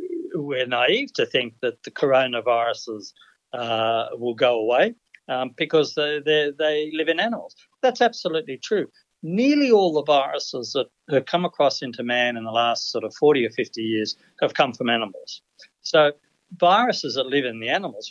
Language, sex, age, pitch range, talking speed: English, male, 60-79, 125-180 Hz, 170 wpm